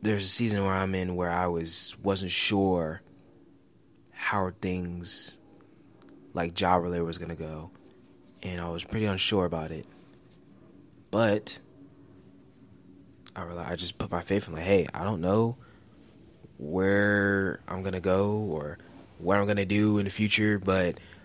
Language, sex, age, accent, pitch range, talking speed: English, male, 20-39, American, 85-105 Hz, 140 wpm